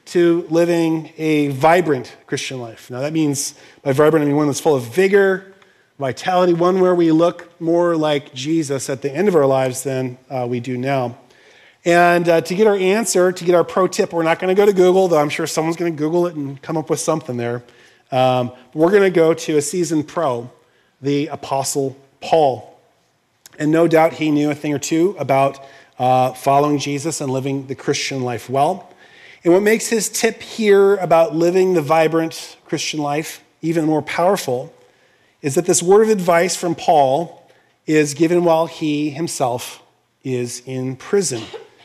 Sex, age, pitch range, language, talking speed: male, 30-49, 145-180 Hz, English, 190 wpm